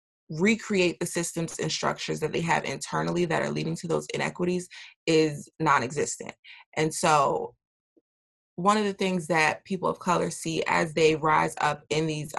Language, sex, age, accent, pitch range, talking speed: English, female, 20-39, American, 155-190 Hz, 165 wpm